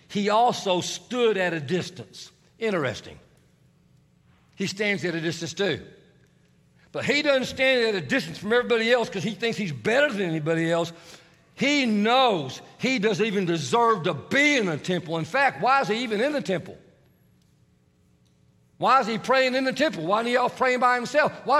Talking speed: 185 wpm